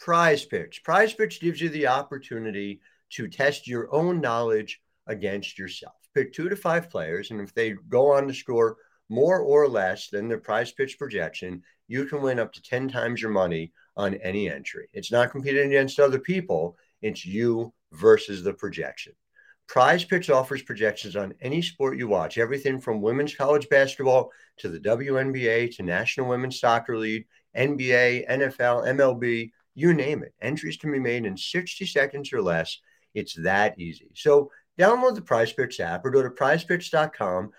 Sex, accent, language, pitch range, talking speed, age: male, American, English, 115-160 Hz, 170 wpm, 50-69